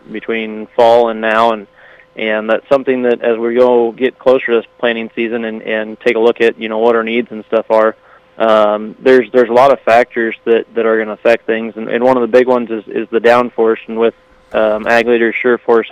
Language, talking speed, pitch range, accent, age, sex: English, 240 wpm, 115-120 Hz, American, 20-39, male